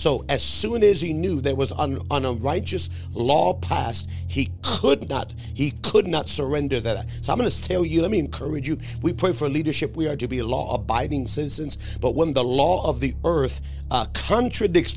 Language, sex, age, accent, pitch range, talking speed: English, male, 40-59, American, 120-165 Hz, 205 wpm